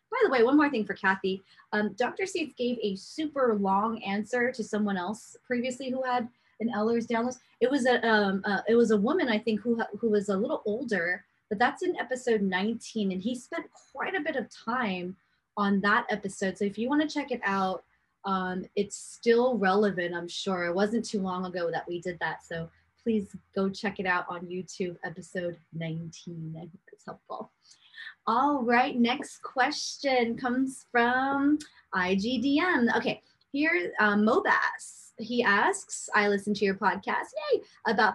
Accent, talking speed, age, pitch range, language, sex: American, 180 wpm, 20-39, 195-255 Hz, English, female